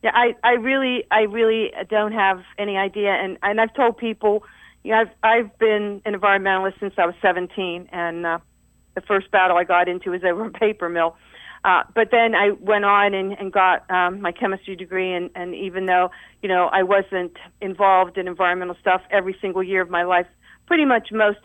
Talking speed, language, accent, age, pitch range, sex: 205 wpm, English, American, 50-69, 190-245 Hz, female